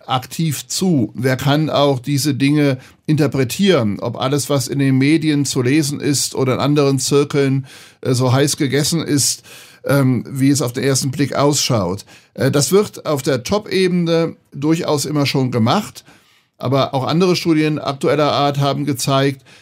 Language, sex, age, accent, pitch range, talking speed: German, male, 60-79, German, 130-155 Hz, 150 wpm